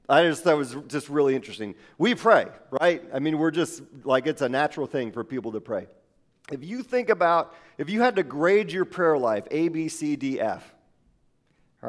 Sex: male